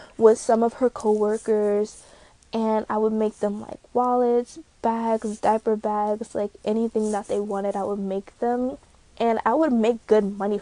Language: English